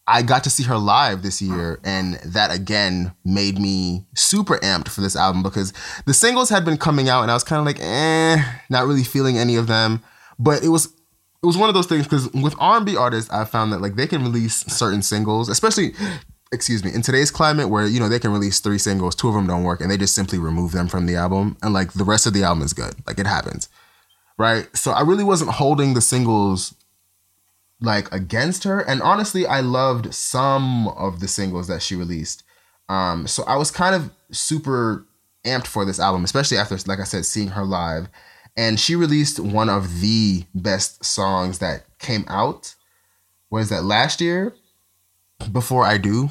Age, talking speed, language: 20-39, 205 wpm, English